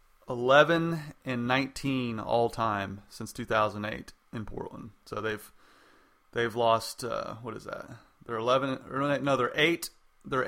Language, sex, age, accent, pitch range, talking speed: English, male, 30-49, American, 110-130 Hz, 150 wpm